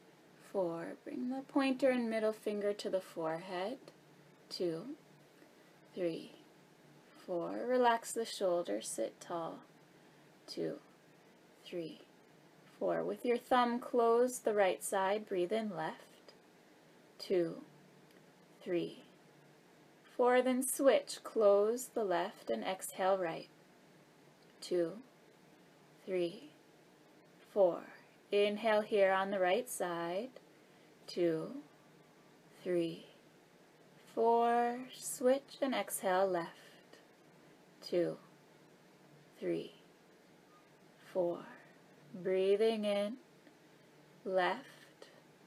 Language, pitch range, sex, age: English, 185-240 Hz, female, 20-39